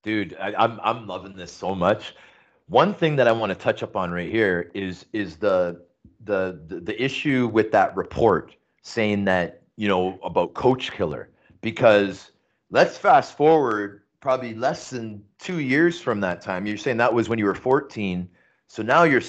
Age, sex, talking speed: 30-49, male, 185 wpm